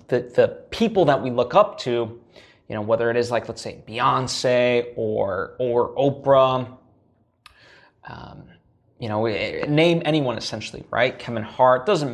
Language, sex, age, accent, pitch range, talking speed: English, male, 20-39, American, 125-155 Hz, 150 wpm